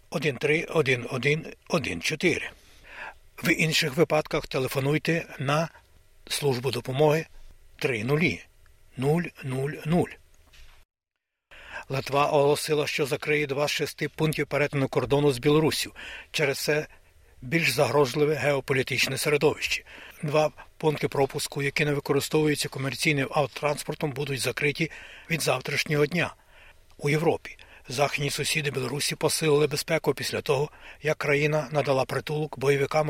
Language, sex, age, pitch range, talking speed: Ukrainian, male, 60-79, 140-155 Hz, 95 wpm